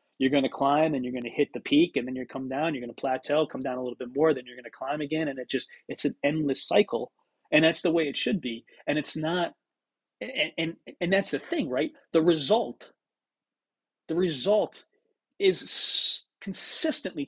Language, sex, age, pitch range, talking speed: English, male, 30-49, 140-190 Hz, 215 wpm